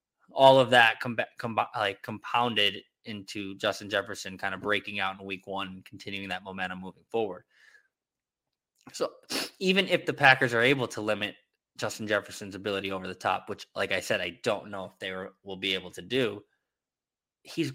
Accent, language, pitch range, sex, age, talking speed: American, English, 100-130 Hz, male, 20-39, 170 wpm